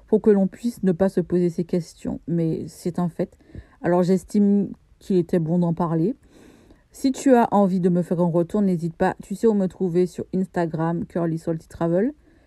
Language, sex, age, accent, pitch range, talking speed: French, female, 40-59, French, 180-225 Hz, 200 wpm